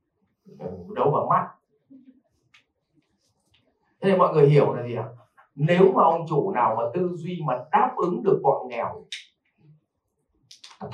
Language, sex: Vietnamese, male